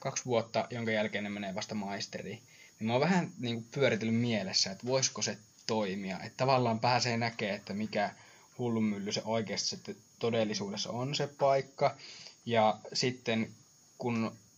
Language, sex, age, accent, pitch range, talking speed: Finnish, male, 20-39, native, 110-135 Hz, 150 wpm